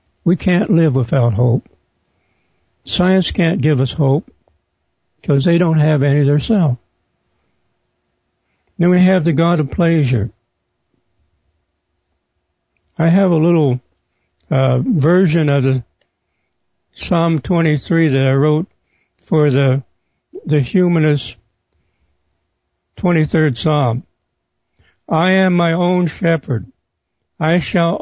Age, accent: 60-79, American